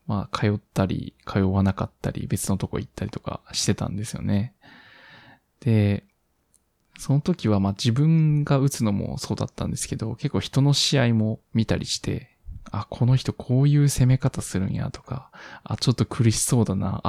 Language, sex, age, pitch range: Japanese, male, 20-39, 100-130 Hz